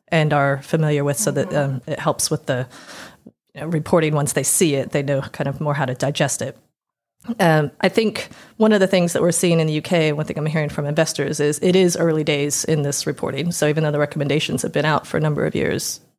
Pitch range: 145-170 Hz